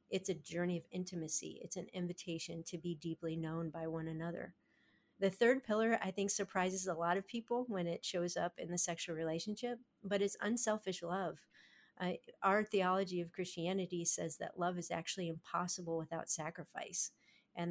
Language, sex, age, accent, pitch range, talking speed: English, female, 40-59, American, 170-190 Hz, 175 wpm